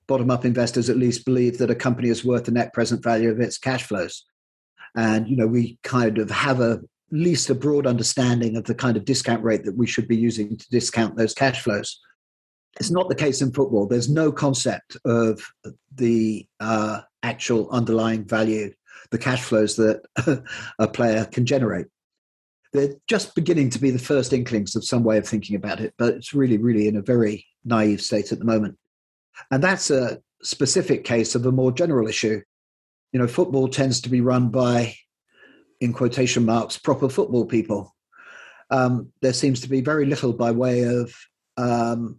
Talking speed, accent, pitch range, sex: 190 wpm, British, 110-130 Hz, male